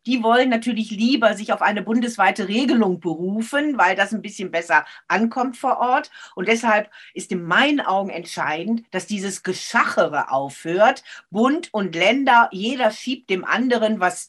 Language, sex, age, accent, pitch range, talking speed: German, female, 50-69, German, 180-240 Hz, 155 wpm